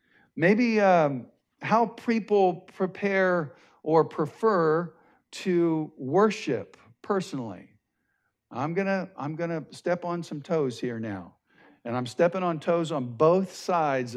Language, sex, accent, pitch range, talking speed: English, male, American, 135-190 Hz, 120 wpm